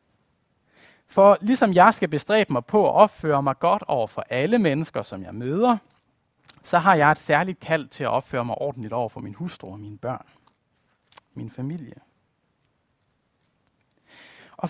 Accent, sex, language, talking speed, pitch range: native, male, Danish, 160 wpm, 140-210 Hz